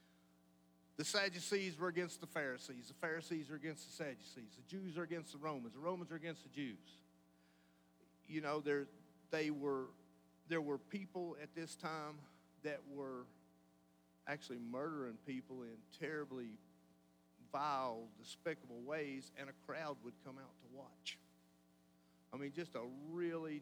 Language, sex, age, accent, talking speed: English, male, 50-69, American, 145 wpm